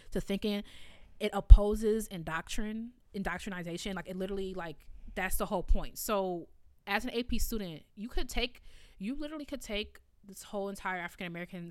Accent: American